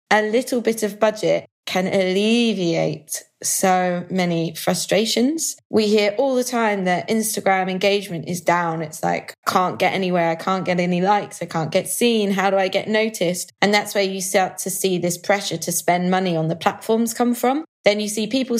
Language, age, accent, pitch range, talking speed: English, 20-39, British, 180-215 Hz, 195 wpm